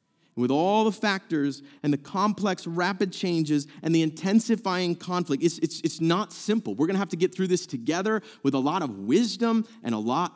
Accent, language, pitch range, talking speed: American, English, 115-160 Hz, 205 wpm